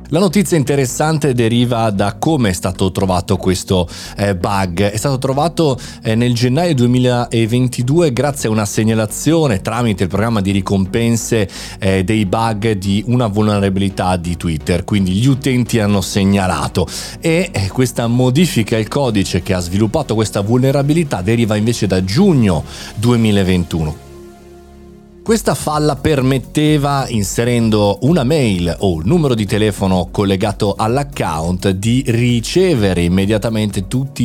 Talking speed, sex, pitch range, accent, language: 120 wpm, male, 95-125 Hz, native, Italian